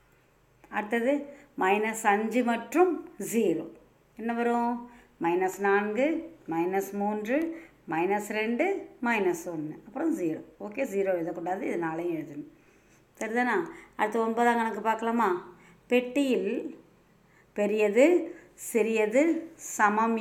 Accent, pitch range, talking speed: native, 185-250 Hz, 95 wpm